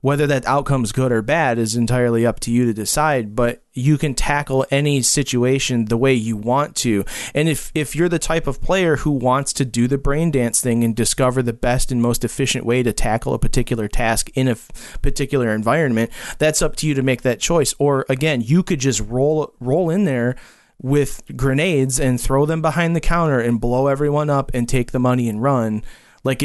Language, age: English, 30-49